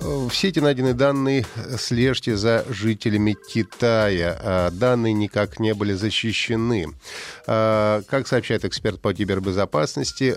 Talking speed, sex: 105 wpm, male